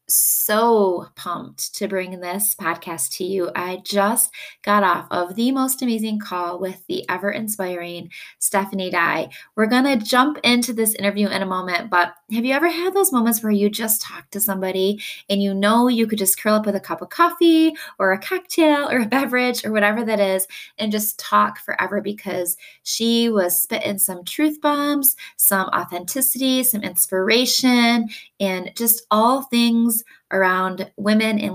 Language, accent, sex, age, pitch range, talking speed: English, American, female, 20-39, 190-235 Hz, 175 wpm